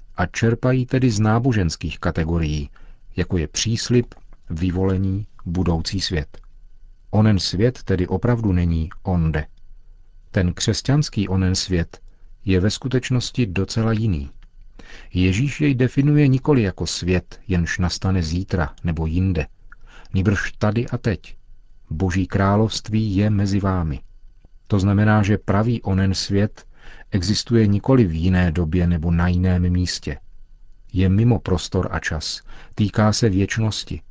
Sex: male